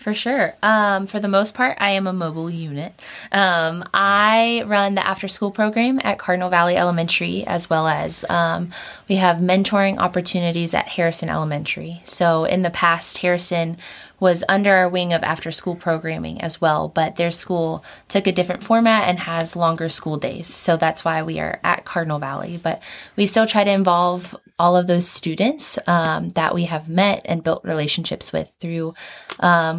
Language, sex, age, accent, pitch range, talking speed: English, female, 20-39, American, 165-195 Hz, 175 wpm